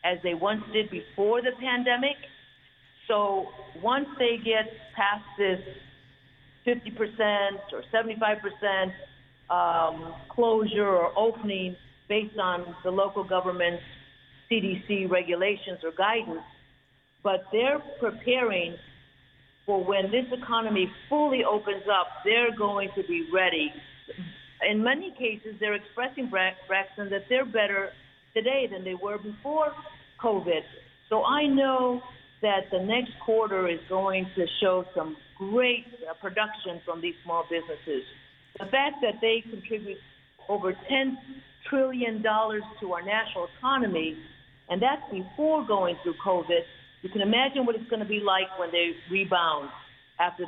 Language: English